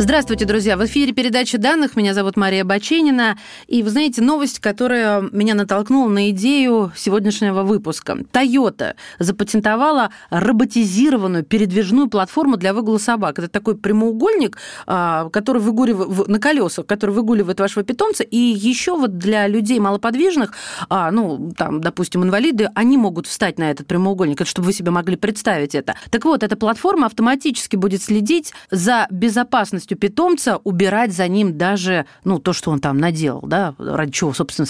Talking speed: 150 wpm